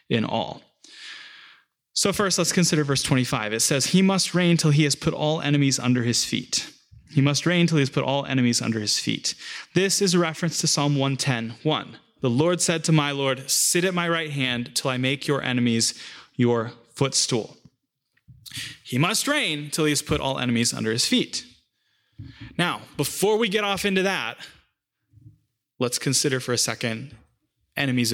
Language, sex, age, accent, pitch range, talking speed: English, male, 20-39, American, 130-185 Hz, 180 wpm